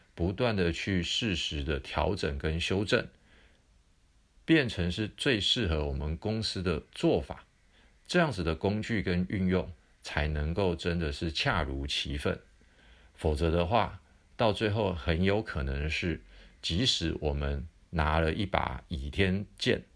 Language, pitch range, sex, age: Chinese, 75-95 Hz, male, 50-69